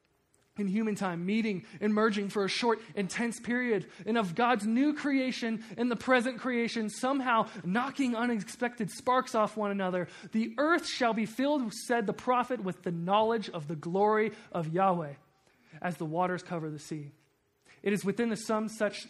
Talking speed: 170 wpm